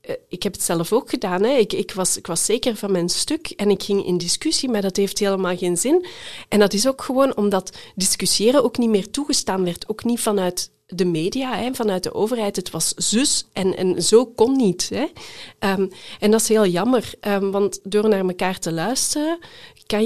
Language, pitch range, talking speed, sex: Dutch, 180-235 Hz, 210 wpm, female